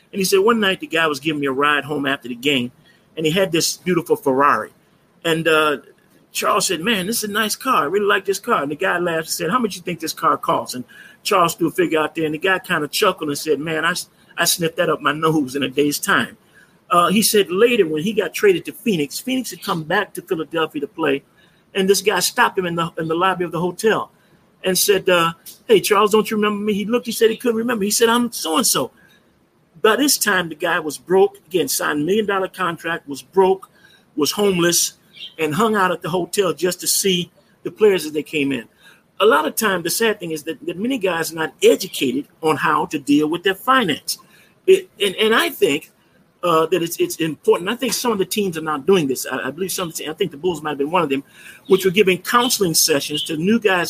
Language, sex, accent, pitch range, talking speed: English, male, American, 160-205 Hz, 250 wpm